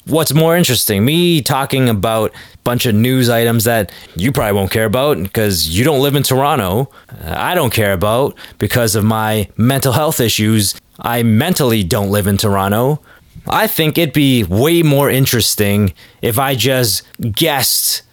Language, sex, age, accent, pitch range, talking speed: English, male, 20-39, American, 110-160 Hz, 165 wpm